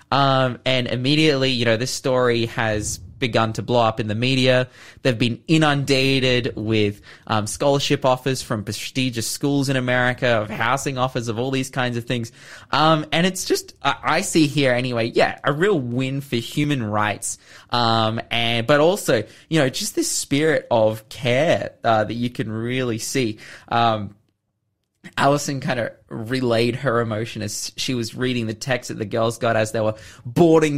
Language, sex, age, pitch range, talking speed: English, male, 20-39, 110-135 Hz, 175 wpm